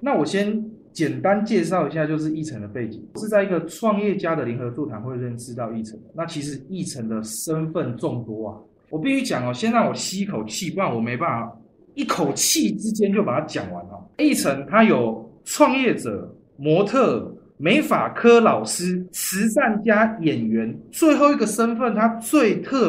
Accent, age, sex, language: native, 20-39, male, Chinese